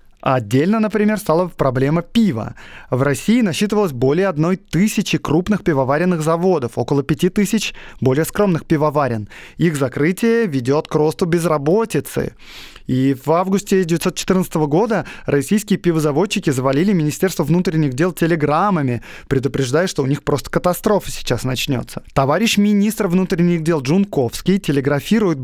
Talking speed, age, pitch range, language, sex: 125 wpm, 20-39, 140-190 Hz, Russian, male